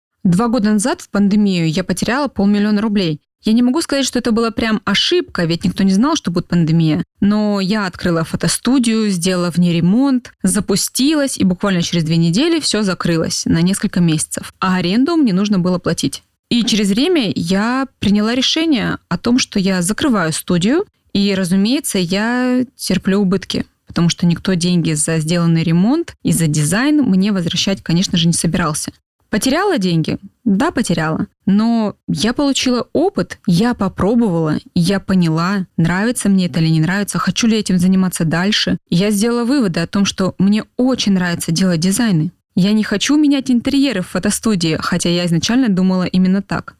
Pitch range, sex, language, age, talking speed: 180-240 Hz, female, Russian, 20-39, 165 wpm